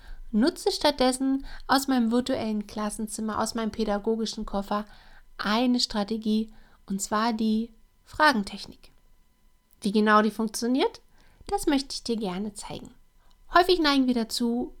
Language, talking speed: German, 120 wpm